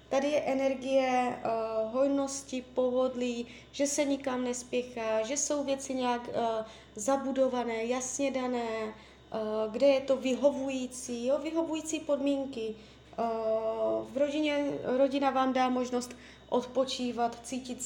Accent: native